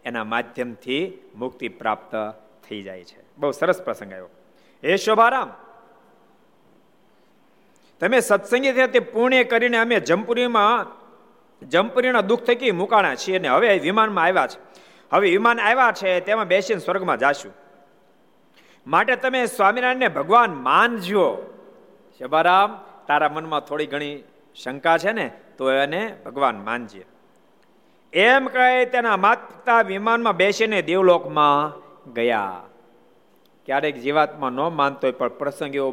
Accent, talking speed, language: native, 90 wpm, Gujarati